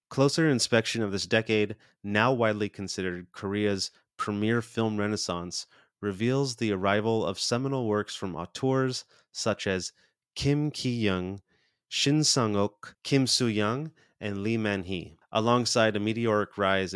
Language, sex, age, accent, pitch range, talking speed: English, male, 30-49, American, 100-120 Hz, 125 wpm